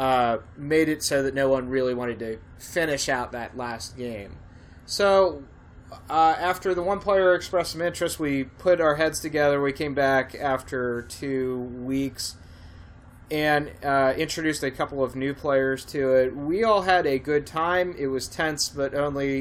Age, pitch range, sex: 20-39, 130-170 Hz, male